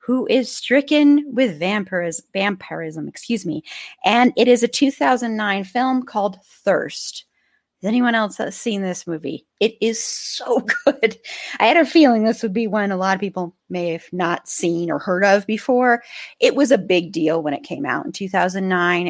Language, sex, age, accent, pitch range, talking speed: English, female, 30-49, American, 170-230 Hz, 180 wpm